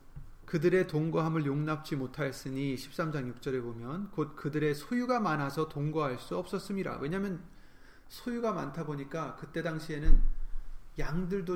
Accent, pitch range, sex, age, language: native, 140-185 Hz, male, 30-49, Korean